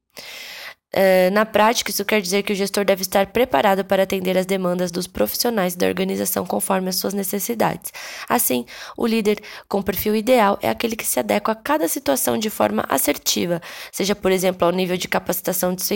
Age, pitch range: 10-29, 185-220 Hz